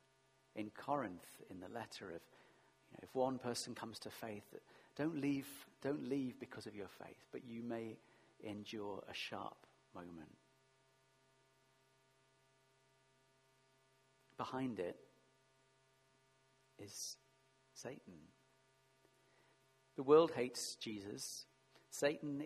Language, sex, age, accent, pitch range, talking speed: English, male, 40-59, British, 115-135 Hz, 100 wpm